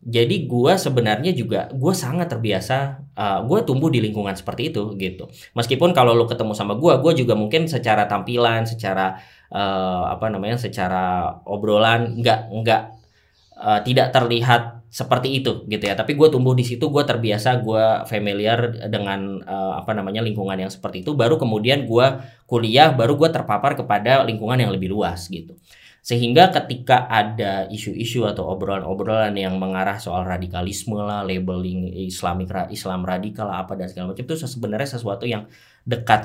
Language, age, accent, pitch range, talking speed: Indonesian, 20-39, native, 100-130 Hz, 160 wpm